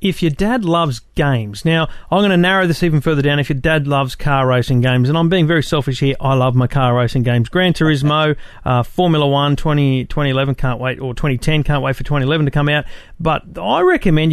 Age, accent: 40-59, Australian